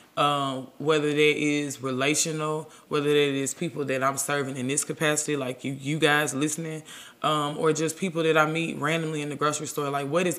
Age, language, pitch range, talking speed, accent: 20-39, English, 140-165 Hz, 200 wpm, American